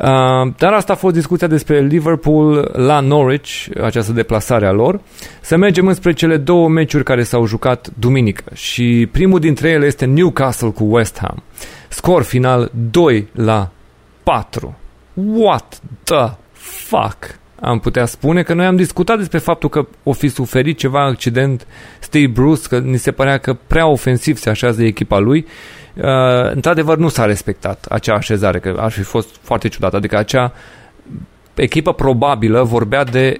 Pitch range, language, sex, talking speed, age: 115-150 Hz, Romanian, male, 160 wpm, 30-49